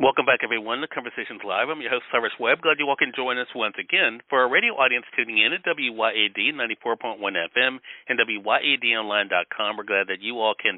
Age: 40-59